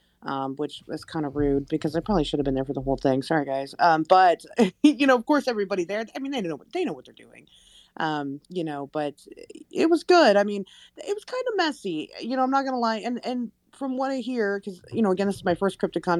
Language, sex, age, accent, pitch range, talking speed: English, female, 30-49, American, 150-235 Hz, 270 wpm